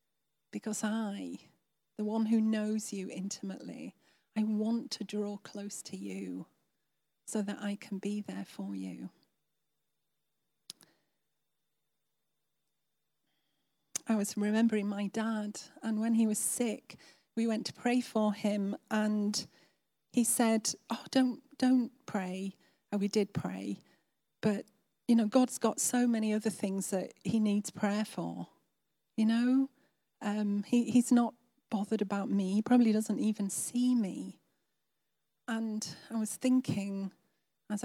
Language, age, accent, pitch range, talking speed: English, 40-59, British, 200-230 Hz, 130 wpm